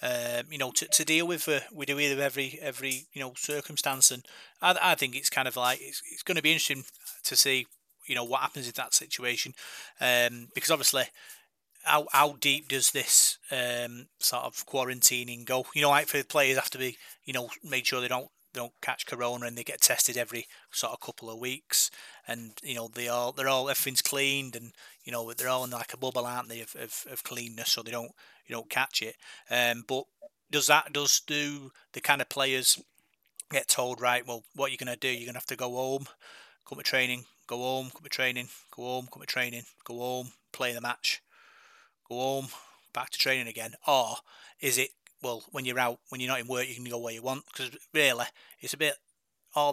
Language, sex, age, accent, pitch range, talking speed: English, male, 30-49, British, 120-135 Hz, 225 wpm